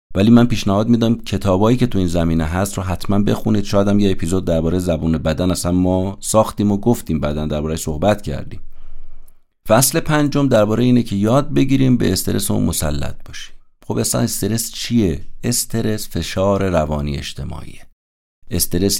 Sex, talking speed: male, 160 wpm